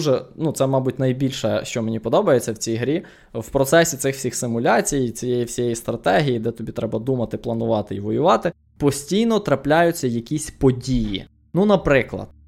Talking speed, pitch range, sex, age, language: 150 wpm, 115-145 Hz, male, 20-39, Ukrainian